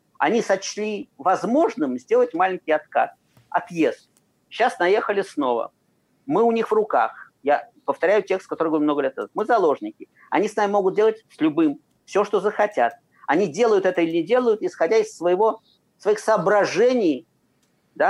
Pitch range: 185-265 Hz